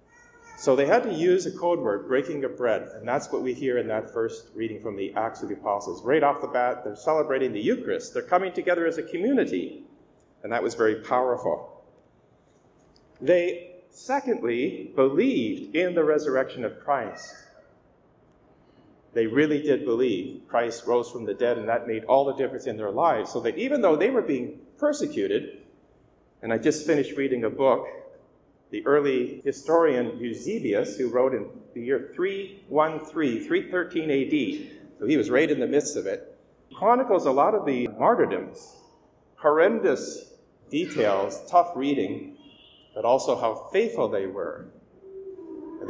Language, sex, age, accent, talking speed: English, male, 40-59, American, 160 wpm